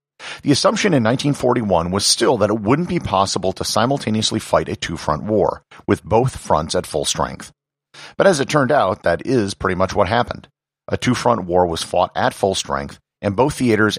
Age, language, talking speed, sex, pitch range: 50-69, English, 200 wpm, male, 95-145 Hz